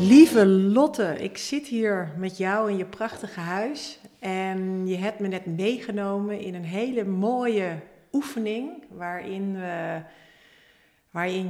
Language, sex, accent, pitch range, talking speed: Dutch, female, Dutch, 170-220 Hz, 130 wpm